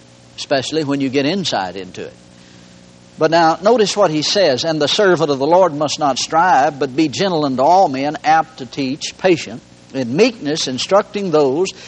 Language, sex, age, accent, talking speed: English, male, 60-79, American, 180 wpm